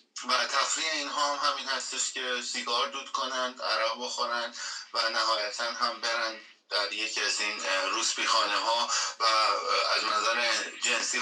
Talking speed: 140 wpm